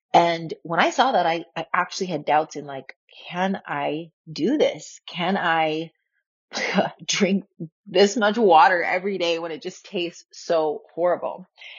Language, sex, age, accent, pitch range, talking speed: English, female, 30-49, American, 165-215 Hz, 155 wpm